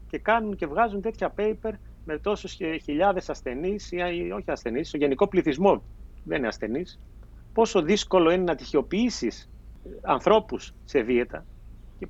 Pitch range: 130-205 Hz